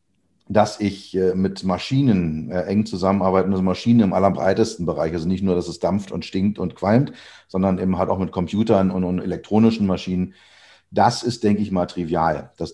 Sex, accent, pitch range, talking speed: male, German, 90-110 Hz, 185 wpm